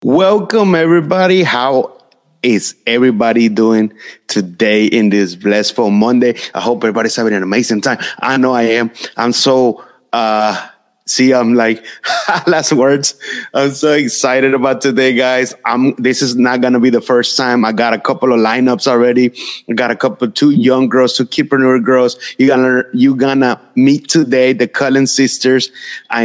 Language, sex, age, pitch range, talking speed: English, male, 30-49, 115-135 Hz, 165 wpm